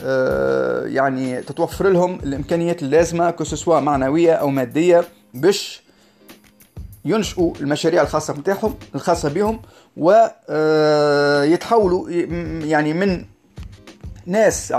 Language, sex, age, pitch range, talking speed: Arabic, male, 30-49, 145-185 Hz, 80 wpm